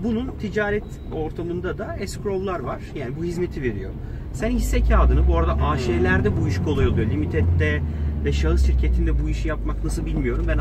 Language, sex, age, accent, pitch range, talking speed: Turkish, male, 40-59, native, 70-100 Hz, 170 wpm